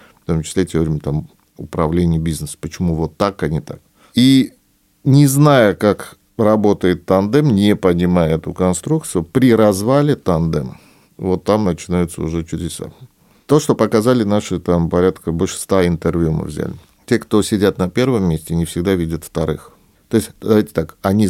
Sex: male